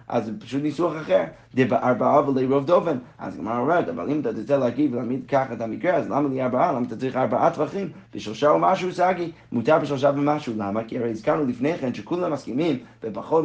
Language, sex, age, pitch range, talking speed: Hebrew, male, 30-49, 120-150 Hz, 205 wpm